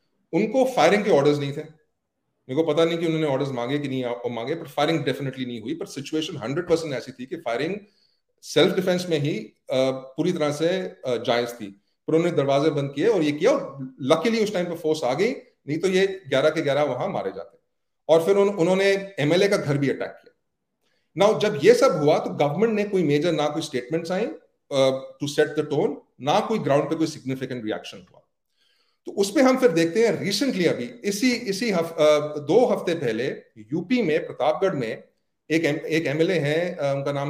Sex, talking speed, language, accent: male, 155 wpm, English, Indian